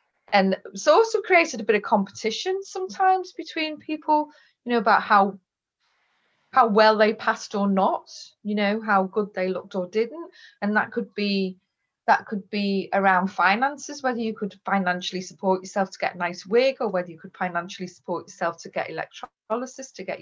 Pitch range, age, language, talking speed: 185-250 Hz, 30-49, English, 180 wpm